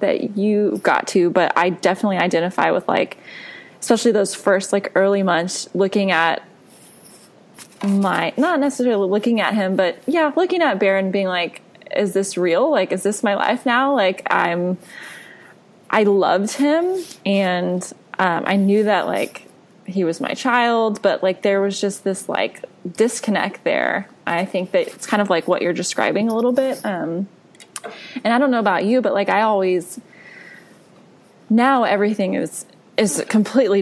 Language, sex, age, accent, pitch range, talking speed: English, female, 20-39, American, 185-225 Hz, 165 wpm